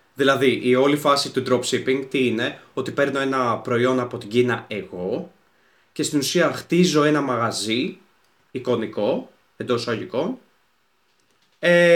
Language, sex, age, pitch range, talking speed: Greek, male, 20-39, 125-155 Hz, 130 wpm